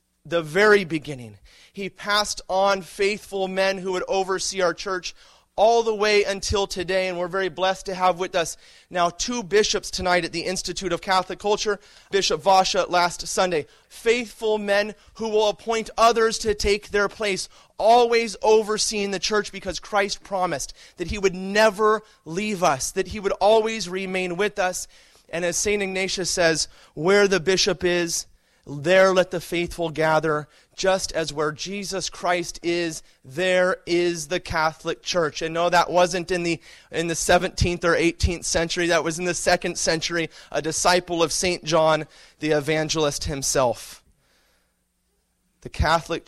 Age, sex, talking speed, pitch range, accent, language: 30-49, male, 160 wpm, 155-195 Hz, American, English